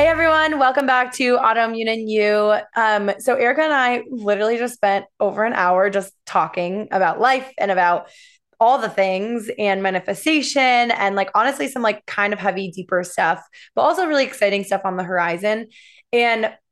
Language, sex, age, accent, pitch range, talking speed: English, female, 20-39, American, 195-250 Hz, 170 wpm